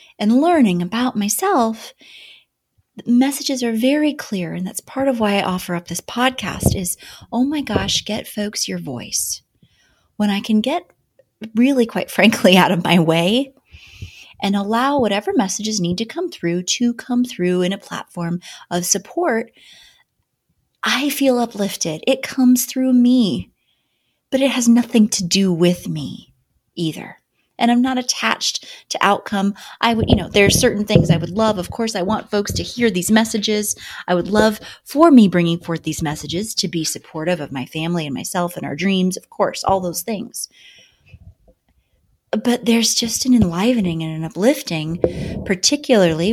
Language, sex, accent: English, female, American